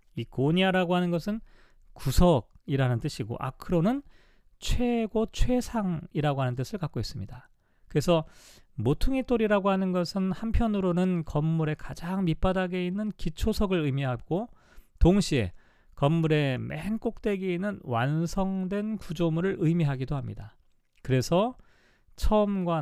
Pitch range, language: 140-195 Hz, Korean